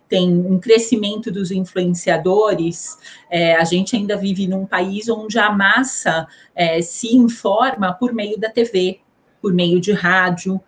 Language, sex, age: Portuguese, female, 30-49